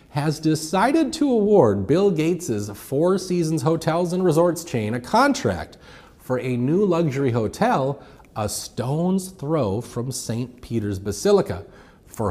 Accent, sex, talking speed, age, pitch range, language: American, male, 130 wpm, 30-49, 110-180 Hz, English